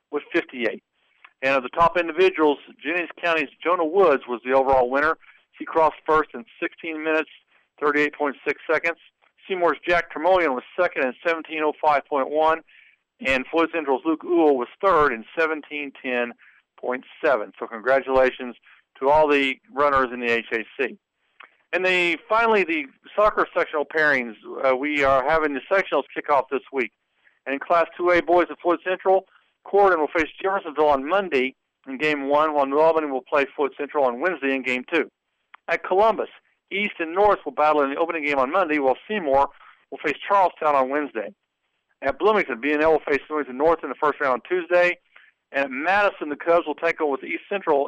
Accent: American